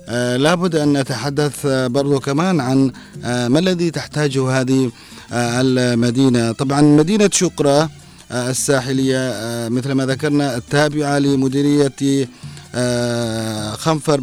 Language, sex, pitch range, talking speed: Arabic, male, 120-145 Hz, 120 wpm